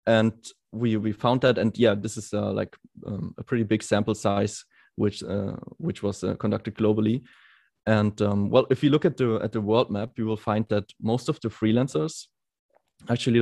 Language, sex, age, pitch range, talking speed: English, male, 20-39, 105-125 Hz, 200 wpm